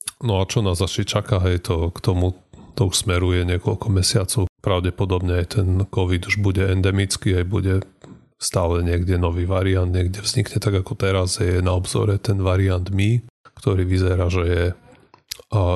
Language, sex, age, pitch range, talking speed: Slovak, male, 30-49, 90-105 Hz, 170 wpm